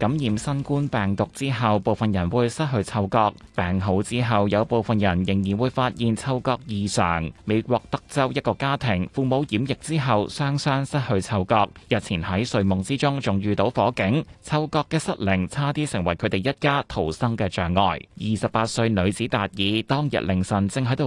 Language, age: Chinese, 20-39